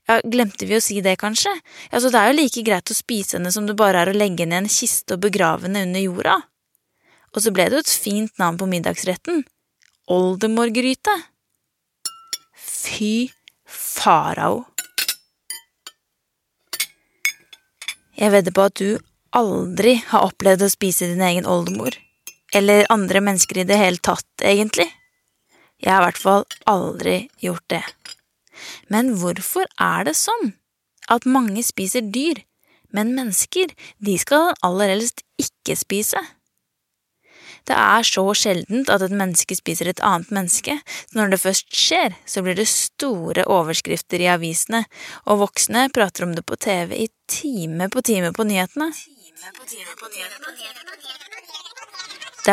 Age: 20-39